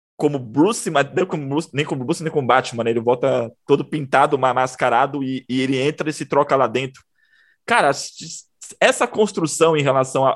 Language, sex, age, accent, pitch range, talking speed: Portuguese, male, 20-39, Brazilian, 125-155 Hz, 185 wpm